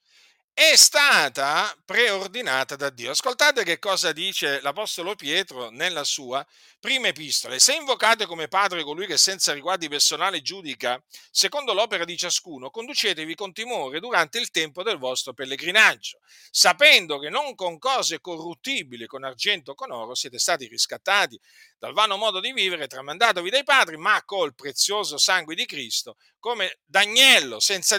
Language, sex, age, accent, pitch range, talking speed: Italian, male, 50-69, native, 140-230 Hz, 150 wpm